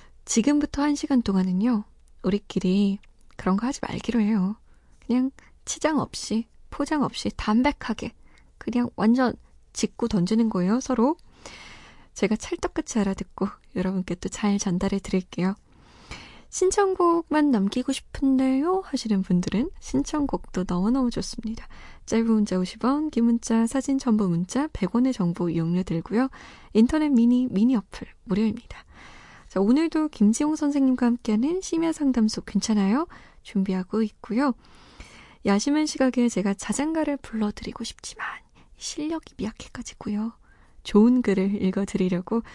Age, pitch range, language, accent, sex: 20-39, 195-270 Hz, Korean, native, female